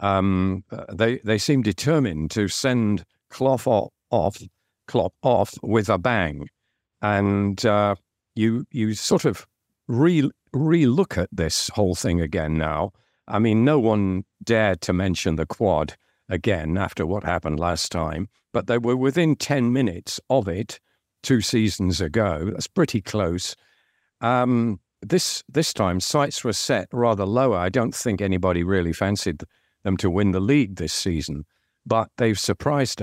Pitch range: 90-120 Hz